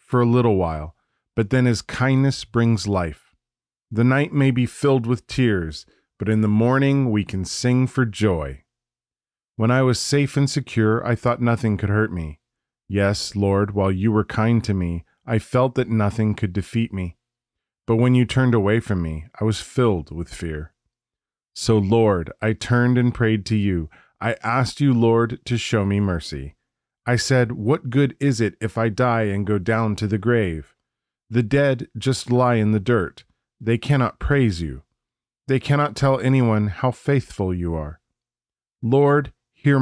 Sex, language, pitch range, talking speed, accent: male, English, 95-125 Hz, 175 wpm, American